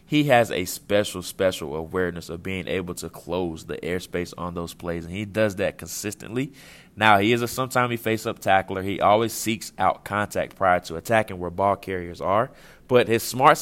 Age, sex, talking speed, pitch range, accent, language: 20-39, male, 195 wpm, 90-110 Hz, American, English